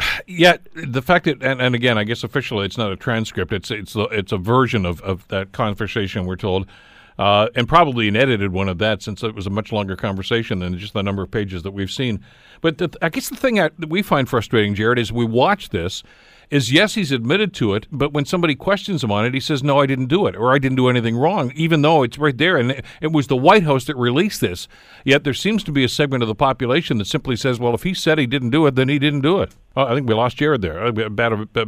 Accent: American